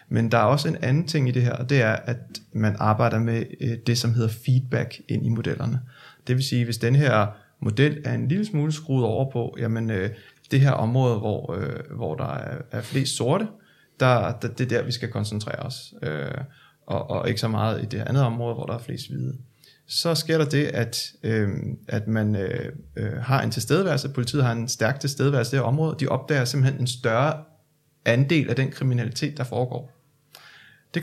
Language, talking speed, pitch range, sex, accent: Danish, 210 wpm, 115-145 Hz, male, native